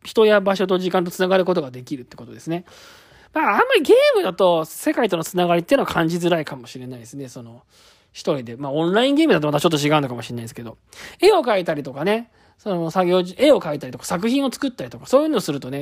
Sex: male